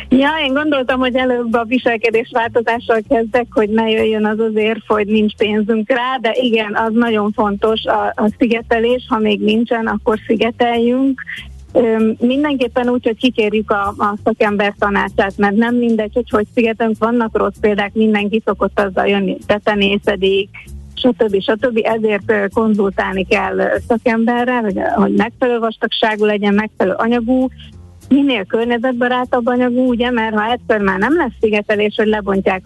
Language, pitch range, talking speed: Hungarian, 205-245 Hz, 145 wpm